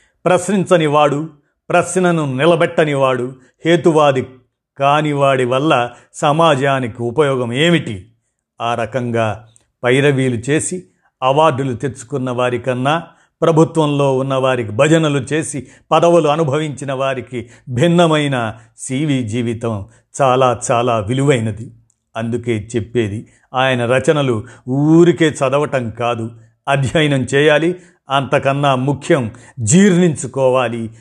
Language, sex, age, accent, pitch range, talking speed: Telugu, male, 50-69, native, 120-155 Hz, 80 wpm